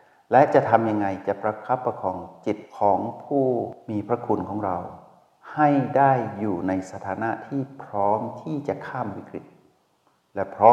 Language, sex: Thai, male